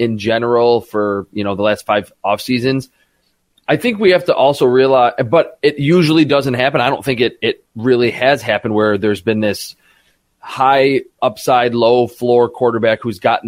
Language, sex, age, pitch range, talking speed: English, male, 30-49, 115-145 Hz, 185 wpm